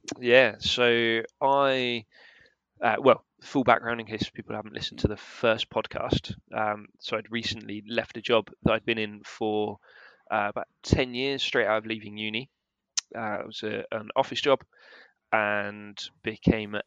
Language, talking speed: English, 160 wpm